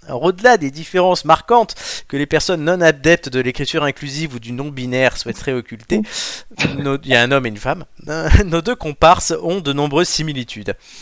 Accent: French